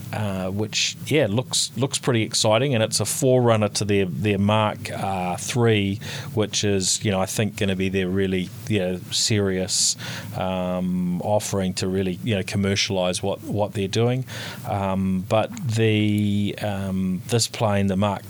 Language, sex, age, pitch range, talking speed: English, male, 30-49, 95-115 Hz, 165 wpm